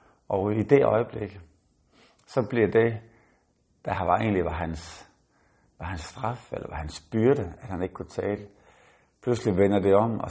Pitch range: 85-100 Hz